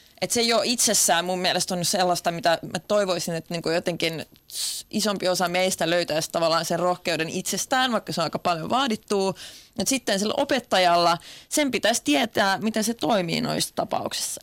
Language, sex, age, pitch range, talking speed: Finnish, female, 30-49, 170-210 Hz, 165 wpm